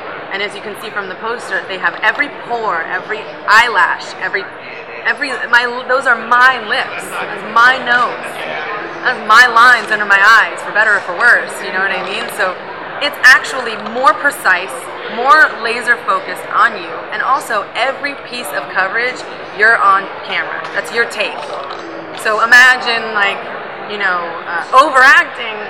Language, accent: English, American